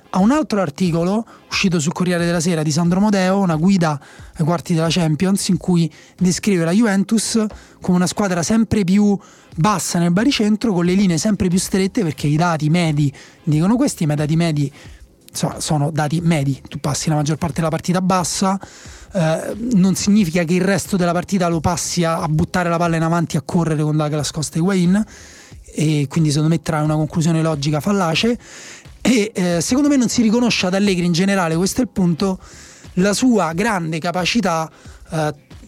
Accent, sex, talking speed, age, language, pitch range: native, male, 190 wpm, 30-49, Italian, 165-195 Hz